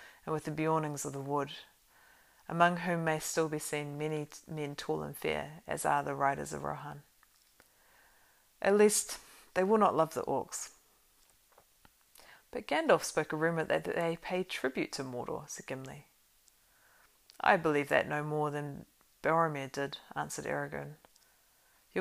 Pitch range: 145-175 Hz